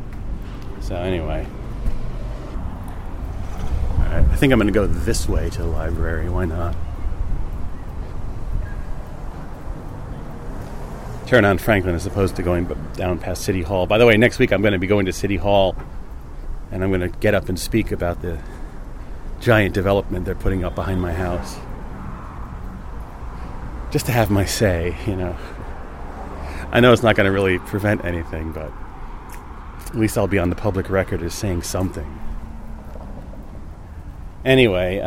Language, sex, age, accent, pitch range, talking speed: English, male, 40-59, American, 85-120 Hz, 145 wpm